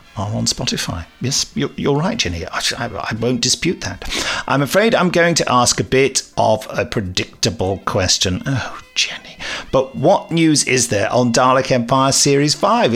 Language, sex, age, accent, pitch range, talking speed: English, male, 50-69, British, 115-130 Hz, 160 wpm